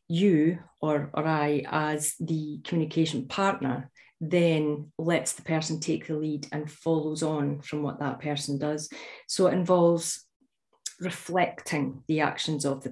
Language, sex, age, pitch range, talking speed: English, female, 40-59, 145-170 Hz, 145 wpm